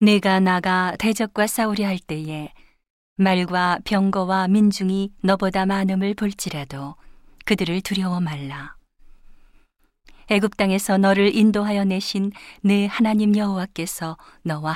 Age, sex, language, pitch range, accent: 40-59, female, Korean, 160-200 Hz, native